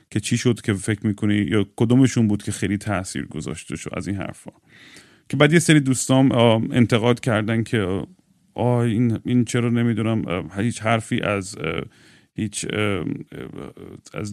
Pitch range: 105-120 Hz